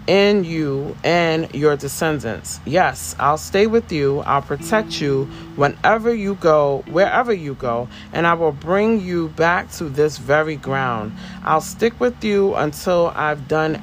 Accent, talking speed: American, 155 wpm